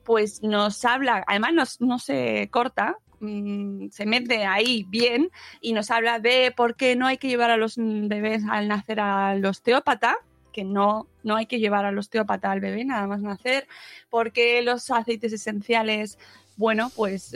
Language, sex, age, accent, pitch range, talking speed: Spanish, female, 20-39, Spanish, 215-255 Hz, 165 wpm